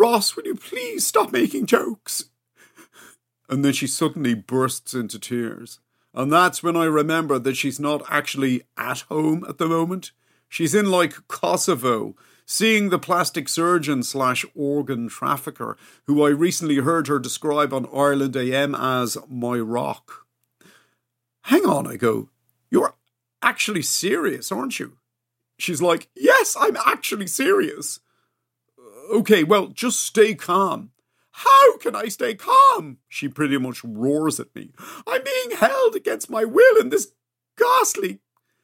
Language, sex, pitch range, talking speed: English, male, 125-195 Hz, 140 wpm